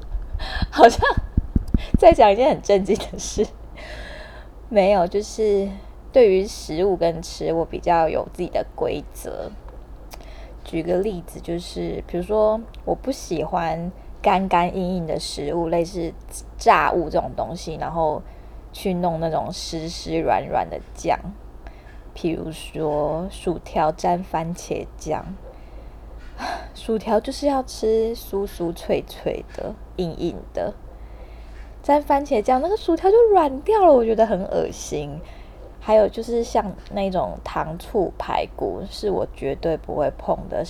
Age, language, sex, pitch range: 20-39, Chinese, female, 165-220 Hz